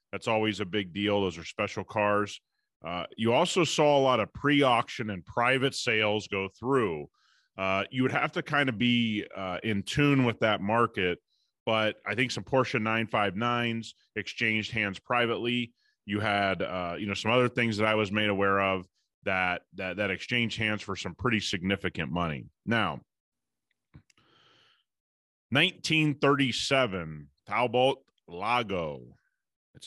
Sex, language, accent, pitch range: male, English, American, 95-120 Hz